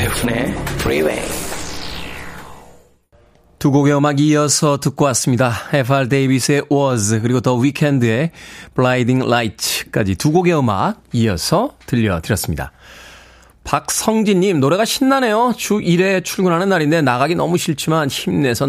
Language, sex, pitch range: Korean, male, 115-155 Hz